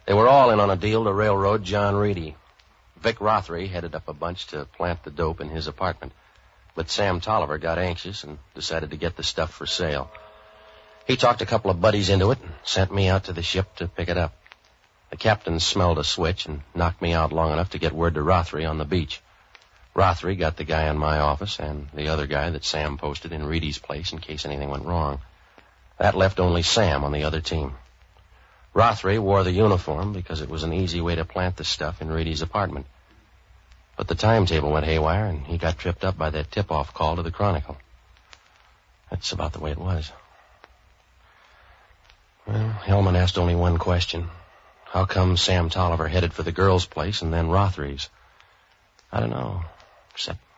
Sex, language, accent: male, English, American